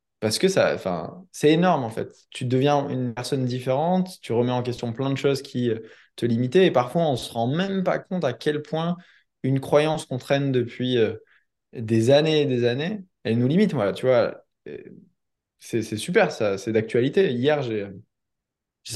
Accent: French